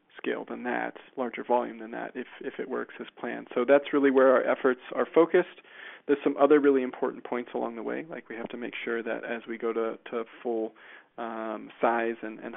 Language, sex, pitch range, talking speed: English, male, 115-135 Hz, 225 wpm